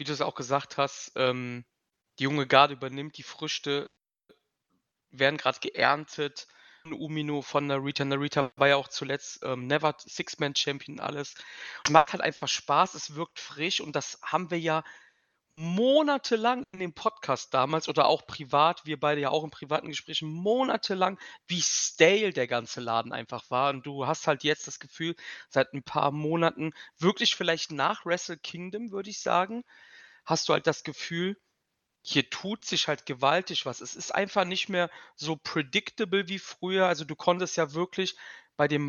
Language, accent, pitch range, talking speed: German, German, 145-180 Hz, 175 wpm